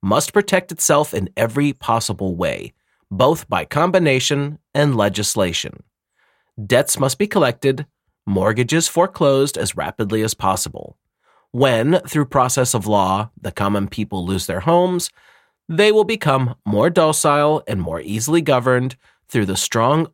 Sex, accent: male, American